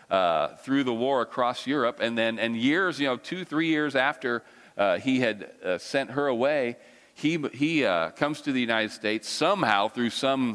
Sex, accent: male, American